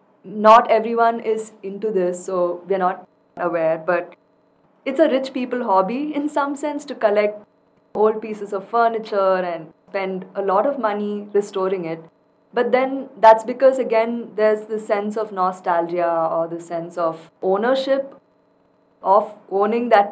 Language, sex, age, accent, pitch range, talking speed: English, female, 20-39, Indian, 185-235 Hz, 150 wpm